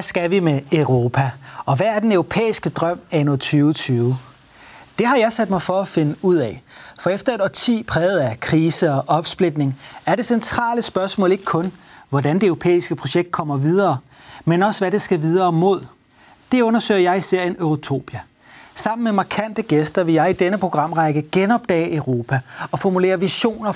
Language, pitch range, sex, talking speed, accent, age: Danish, 150-200 Hz, male, 180 wpm, native, 30-49